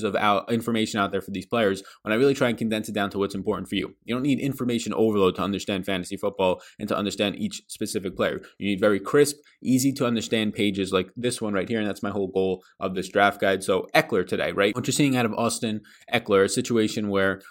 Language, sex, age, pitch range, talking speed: English, male, 20-39, 100-125 Hz, 245 wpm